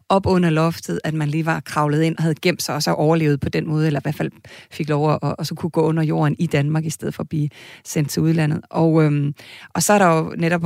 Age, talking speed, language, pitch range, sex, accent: 30-49, 285 wpm, Danish, 150-180 Hz, female, native